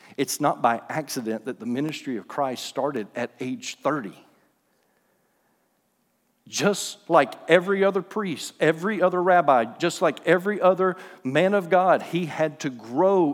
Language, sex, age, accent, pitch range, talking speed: English, male, 50-69, American, 125-170 Hz, 145 wpm